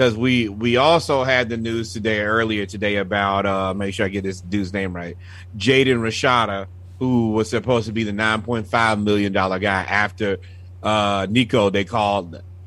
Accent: American